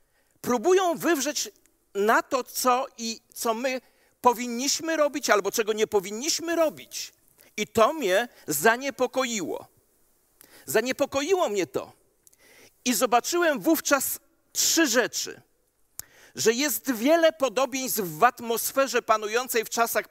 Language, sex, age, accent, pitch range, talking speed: Polish, male, 50-69, native, 220-280 Hz, 105 wpm